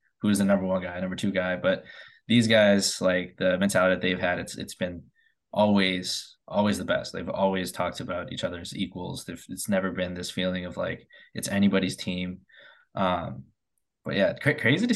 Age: 20-39